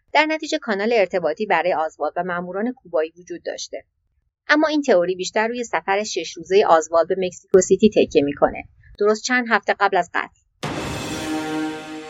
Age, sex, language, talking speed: 30-49, female, Persian, 150 wpm